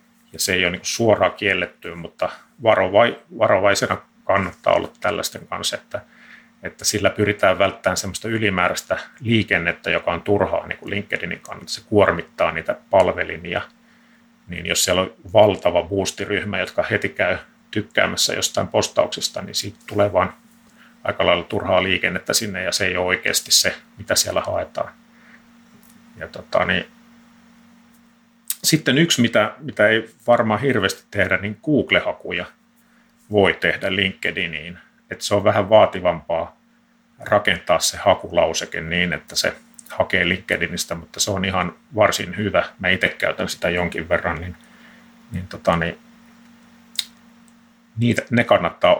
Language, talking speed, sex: Finnish, 135 wpm, male